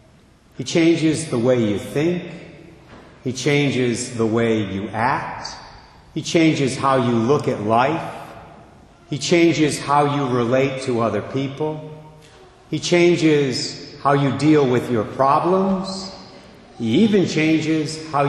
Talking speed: 130 wpm